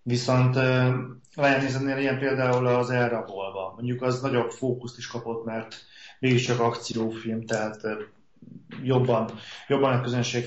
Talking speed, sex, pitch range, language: 130 wpm, male, 120-140 Hz, Hungarian